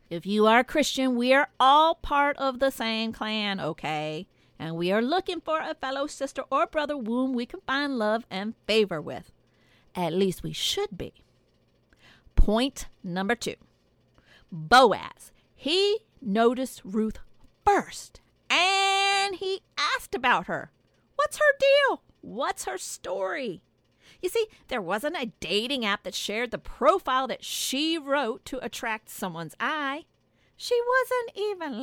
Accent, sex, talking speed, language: American, female, 145 wpm, English